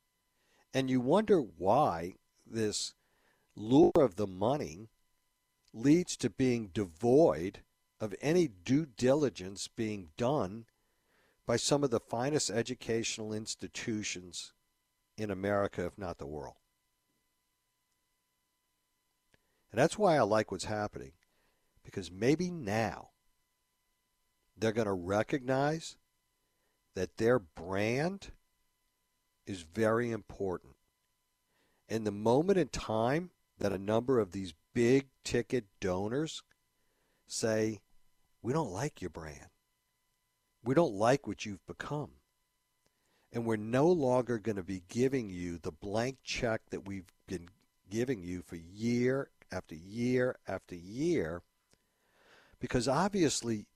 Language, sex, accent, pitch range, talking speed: English, male, American, 100-130 Hz, 115 wpm